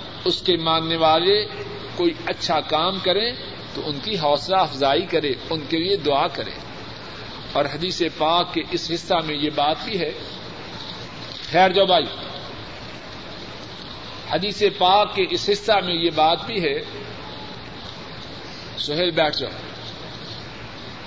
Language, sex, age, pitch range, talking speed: Urdu, male, 50-69, 150-205 Hz, 130 wpm